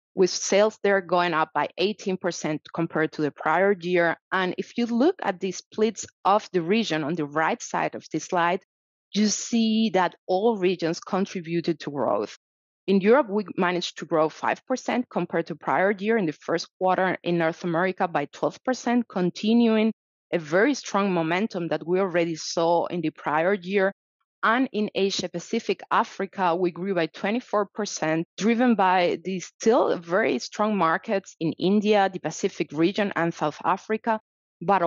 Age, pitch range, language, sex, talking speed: 30-49, 165-210 Hz, English, female, 160 wpm